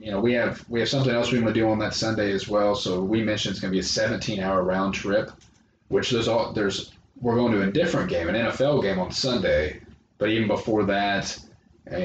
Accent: American